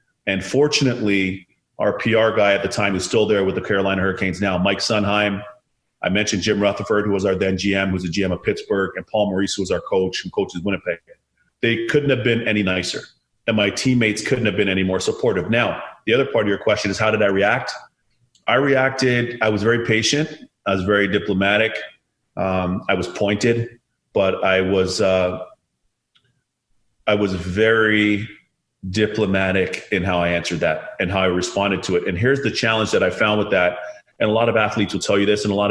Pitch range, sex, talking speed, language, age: 95-115 Hz, male, 205 wpm, English, 30-49